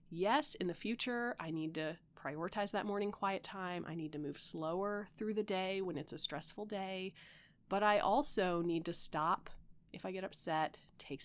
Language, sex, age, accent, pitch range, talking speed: English, female, 30-49, American, 165-210 Hz, 190 wpm